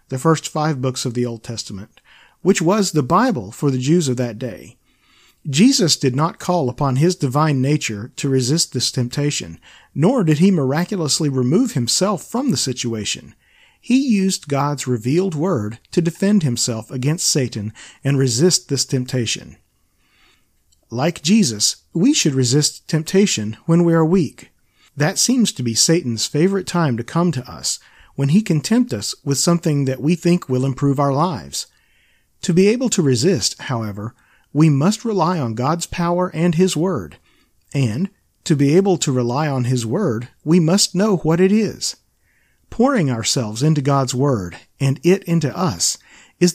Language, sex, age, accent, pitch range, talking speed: English, male, 40-59, American, 125-180 Hz, 165 wpm